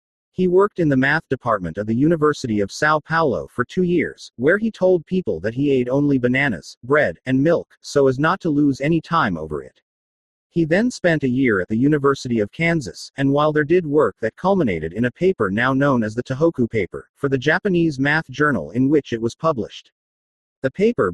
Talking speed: 210 wpm